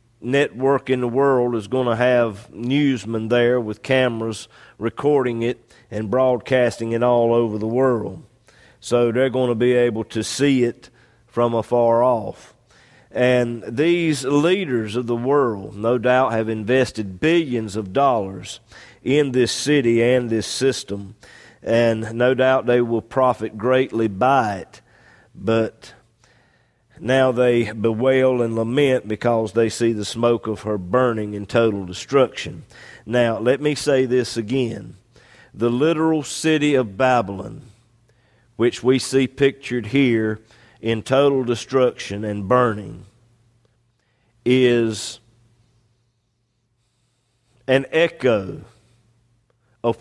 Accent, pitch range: American, 115-130 Hz